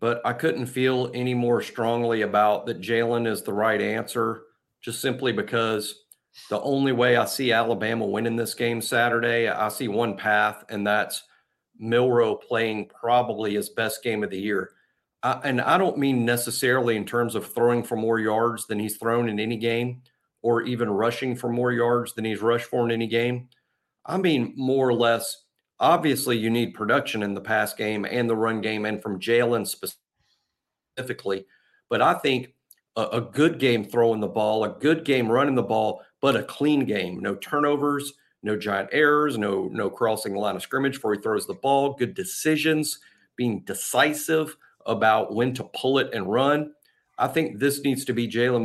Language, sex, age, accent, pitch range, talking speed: English, male, 40-59, American, 110-130 Hz, 185 wpm